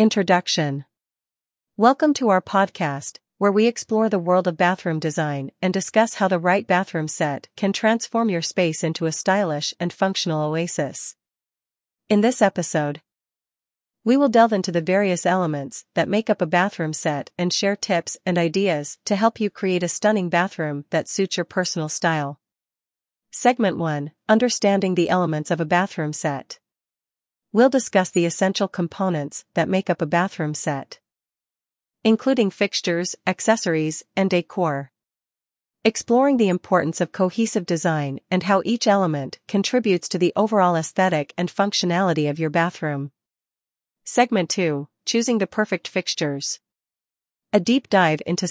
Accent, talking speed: American, 145 wpm